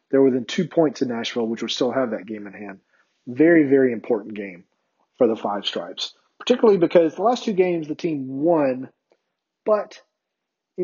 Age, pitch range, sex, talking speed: 30-49, 125-150 Hz, male, 190 wpm